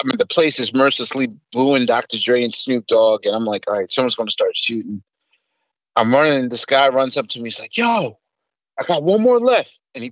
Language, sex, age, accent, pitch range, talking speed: English, male, 30-49, American, 120-155 Hz, 245 wpm